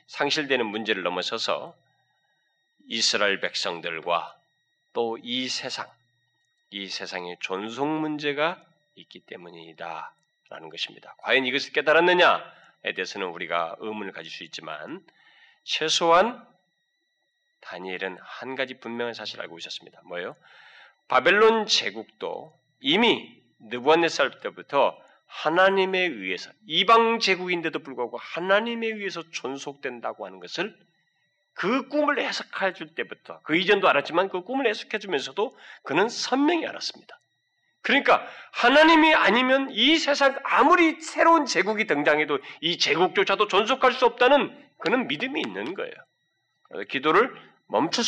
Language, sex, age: Korean, male, 30-49